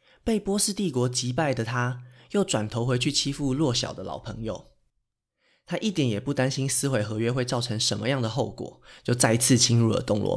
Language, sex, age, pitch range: Chinese, male, 20-39, 120-150 Hz